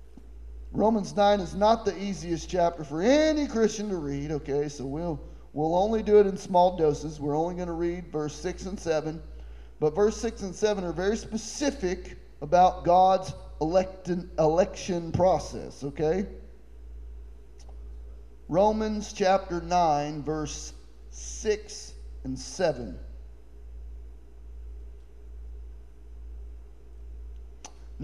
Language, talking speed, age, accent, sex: English, 110 wpm, 40-59, American, male